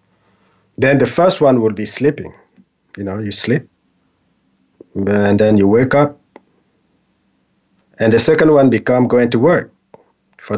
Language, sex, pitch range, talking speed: English, male, 100-130 Hz, 140 wpm